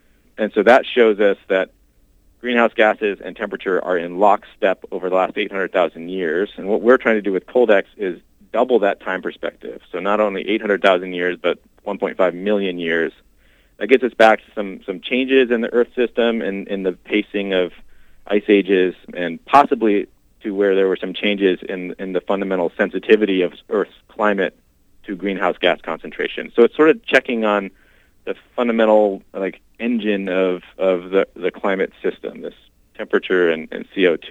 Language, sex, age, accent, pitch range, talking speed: English, male, 30-49, American, 90-110 Hz, 175 wpm